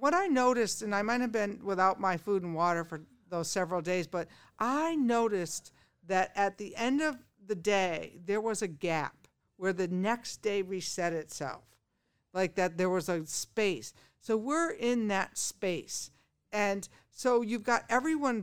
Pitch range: 185-235 Hz